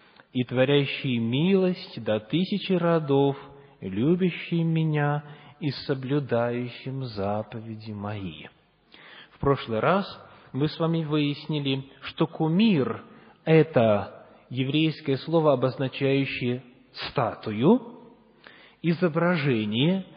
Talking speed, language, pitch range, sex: 75 wpm, English, 135-180 Hz, male